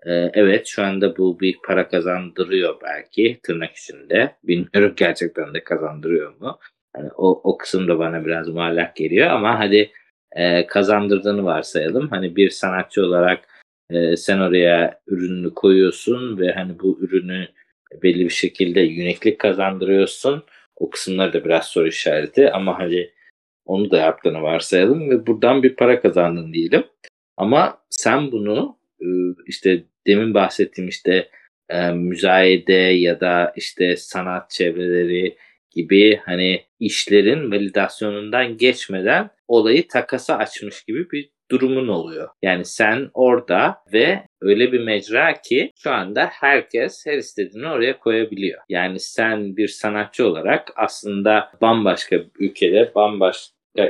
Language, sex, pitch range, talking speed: Turkish, male, 90-105 Hz, 130 wpm